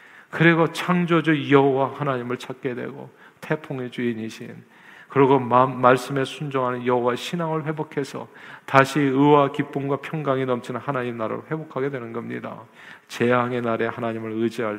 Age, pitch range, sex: 40-59, 120-155 Hz, male